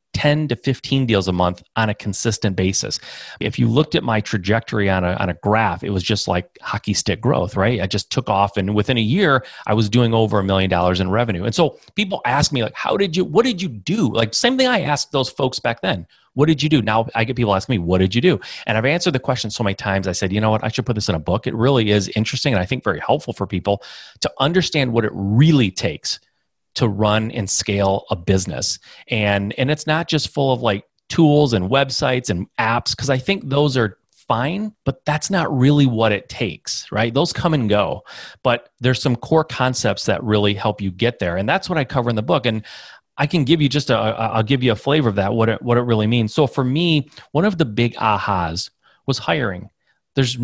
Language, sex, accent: English, male, American